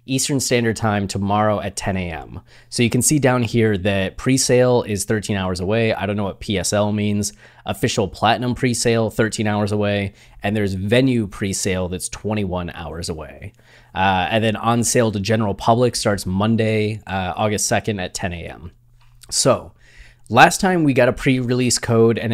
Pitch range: 100-120 Hz